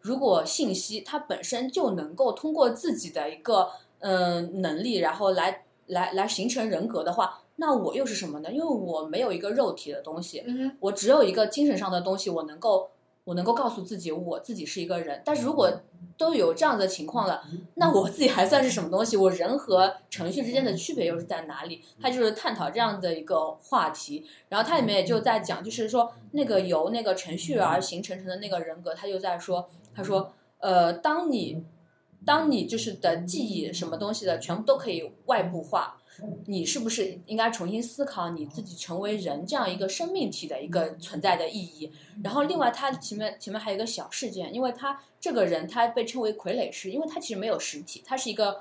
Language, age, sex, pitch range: Chinese, 20-39, female, 175-245 Hz